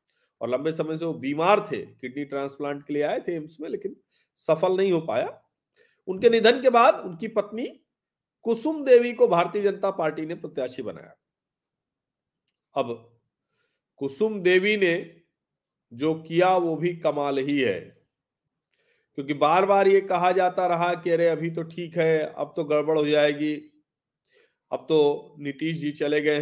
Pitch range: 155-210 Hz